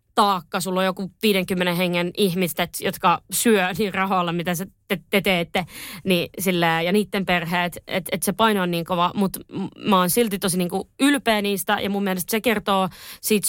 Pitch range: 180-210 Hz